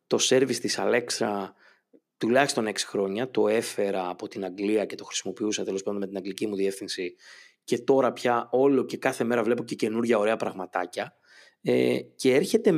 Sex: male